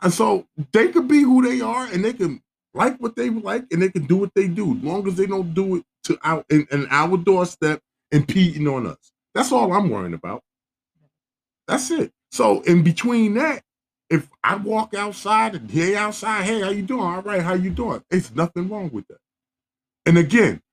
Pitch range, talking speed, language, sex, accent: 150-205 Hz, 210 wpm, English, male, American